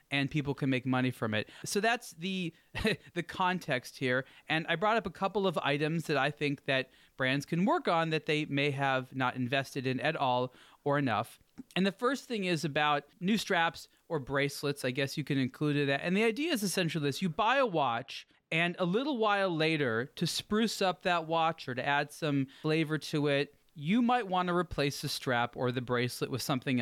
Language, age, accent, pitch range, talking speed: English, 30-49, American, 135-180 Hz, 210 wpm